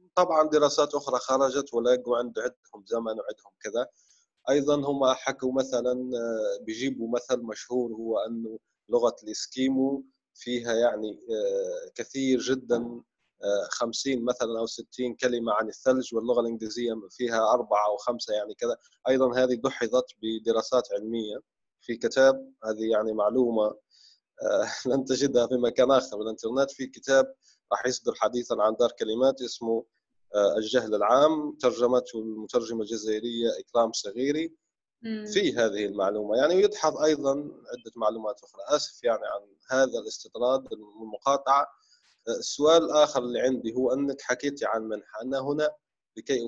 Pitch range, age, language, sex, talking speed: 115-140 Hz, 20-39, Arabic, male, 130 wpm